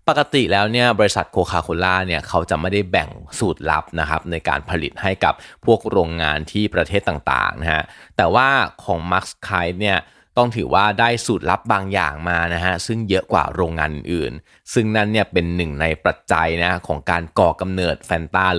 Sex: male